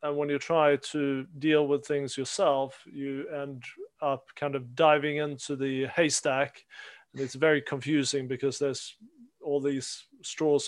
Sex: male